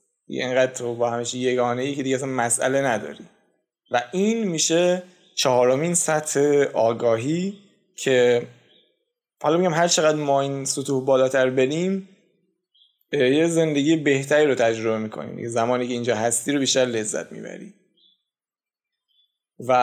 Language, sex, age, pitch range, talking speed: Persian, male, 20-39, 130-165 Hz, 125 wpm